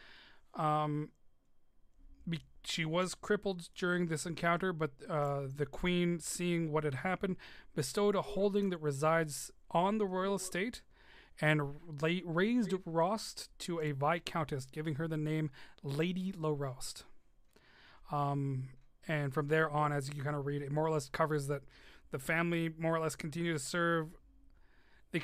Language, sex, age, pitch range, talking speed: English, male, 30-49, 145-170 Hz, 145 wpm